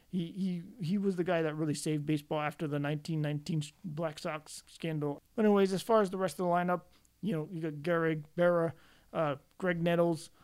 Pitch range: 155-185 Hz